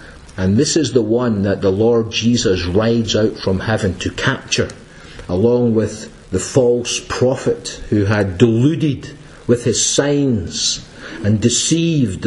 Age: 50-69